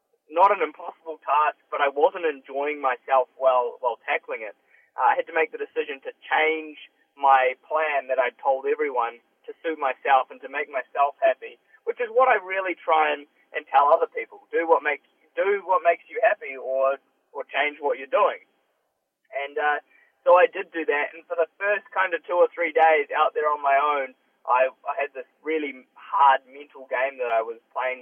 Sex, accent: male, Australian